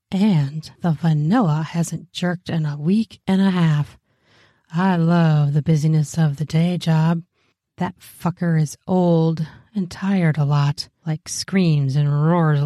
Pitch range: 145-170 Hz